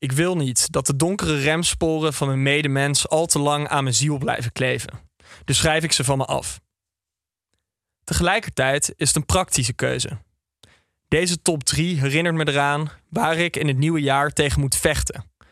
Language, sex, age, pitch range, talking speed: Dutch, male, 20-39, 100-160 Hz, 180 wpm